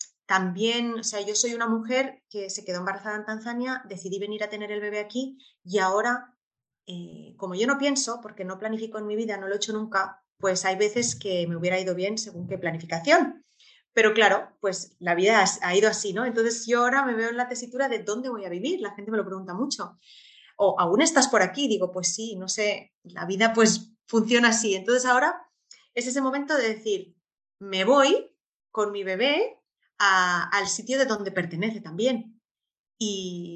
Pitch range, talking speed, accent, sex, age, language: 190-245 Hz, 200 wpm, Spanish, female, 30-49, Spanish